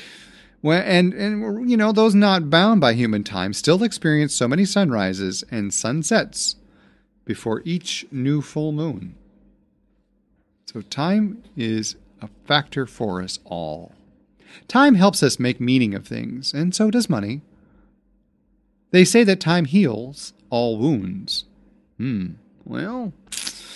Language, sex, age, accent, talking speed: English, male, 40-59, American, 125 wpm